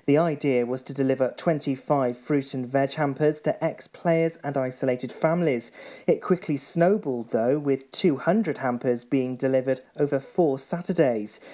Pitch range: 130-160 Hz